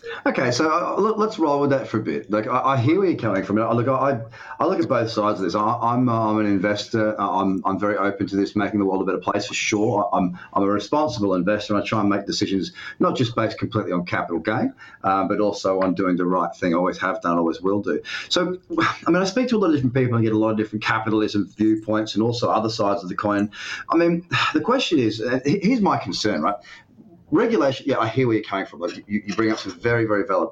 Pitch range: 100-130 Hz